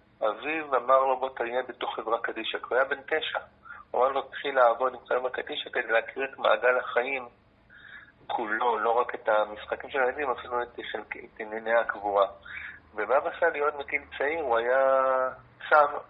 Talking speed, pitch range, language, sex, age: 170 wpm, 110-140 Hz, Hebrew, male, 40-59